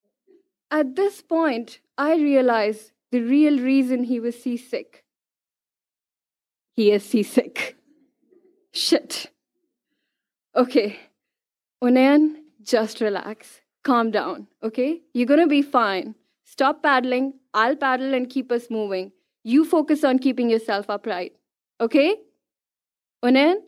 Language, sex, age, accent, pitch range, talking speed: English, female, 10-29, Indian, 240-305 Hz, 110 wpm